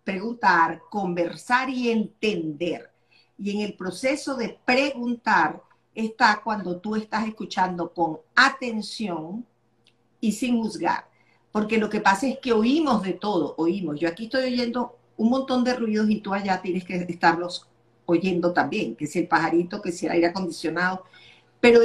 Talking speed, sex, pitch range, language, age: 155 wpm, female, 175-230 Hz, Spanish, 50-69